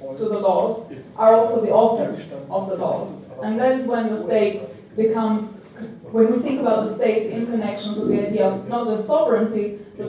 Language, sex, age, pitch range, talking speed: German, female, 20-39, 205-245 Hz, 195 wpm